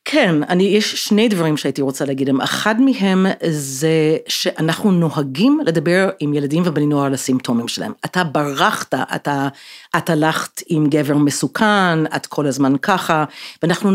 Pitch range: 150-210 Hz